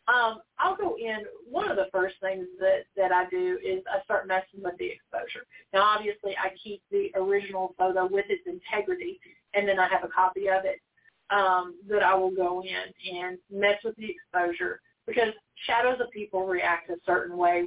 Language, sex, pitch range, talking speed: English, female, 180-215 Hz, 195 wpm